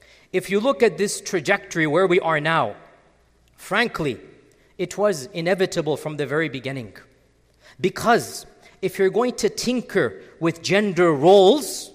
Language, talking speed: English, 135 wpm